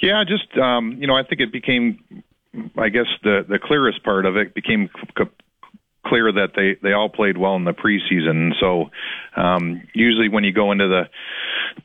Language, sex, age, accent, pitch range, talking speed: English, male, 40-59, American, 90-115 Hz, 180 wpm